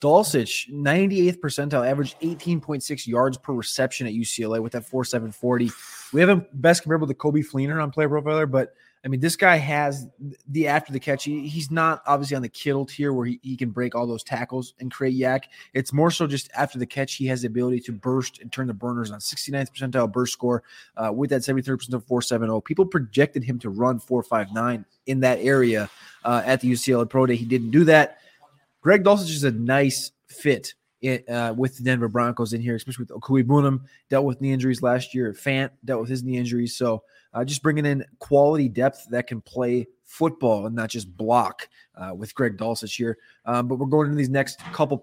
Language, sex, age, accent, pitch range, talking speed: English, male, 20-39, American, 120-140 Hz, 210 wpm